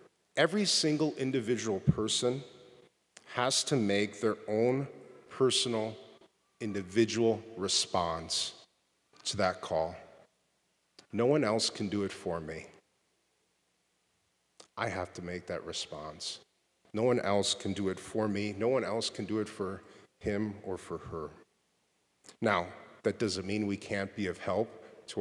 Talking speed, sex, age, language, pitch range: 140 wpm, male, 40-59, English, 100-135 Hz